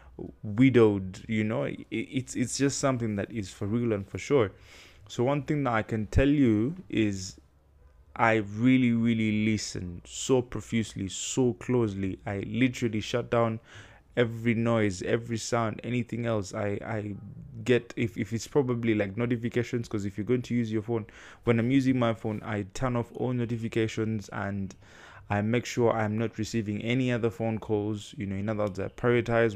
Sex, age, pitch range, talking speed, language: male, 20-39, 100-115 Hz, 175 wpm, English